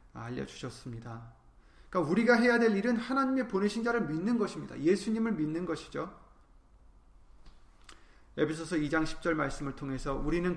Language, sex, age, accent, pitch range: Korean, male, 30-49, native, 125-190 Hz